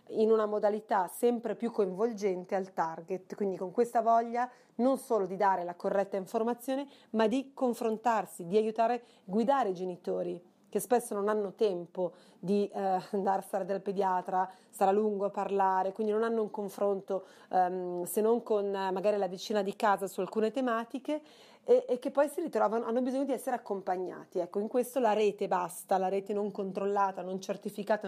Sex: female